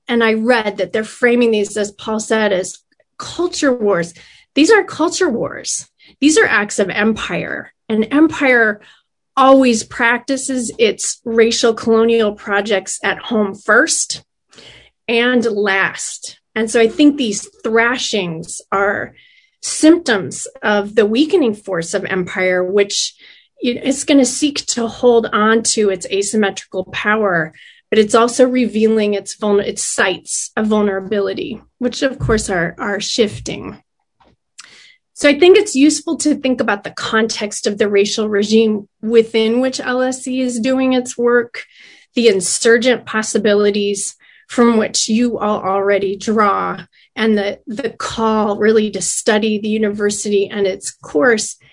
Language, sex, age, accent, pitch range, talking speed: English, female, 30-49, American, 205-255 Hz, 135 wpm